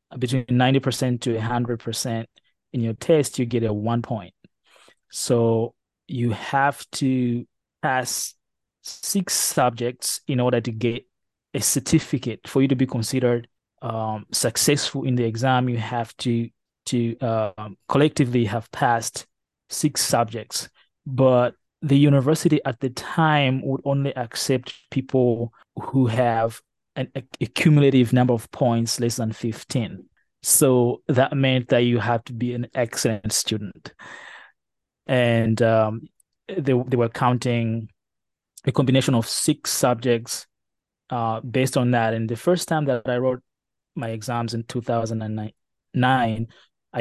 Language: English